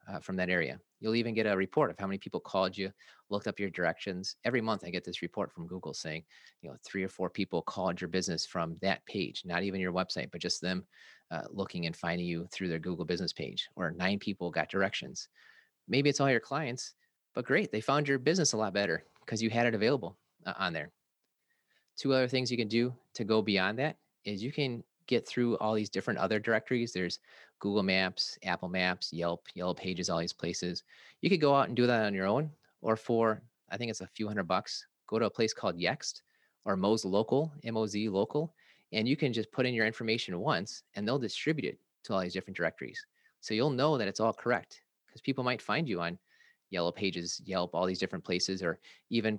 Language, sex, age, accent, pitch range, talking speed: English, male, 30-49, American, 90-125 Hz, 225 wpm